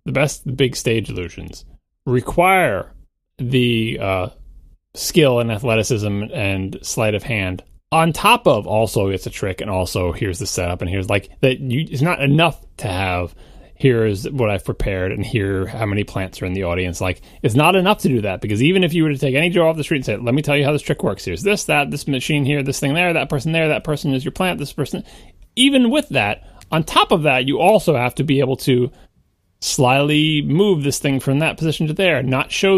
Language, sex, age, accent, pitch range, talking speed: English, male, 30-49, American, 95-150 Hz, 225 wpm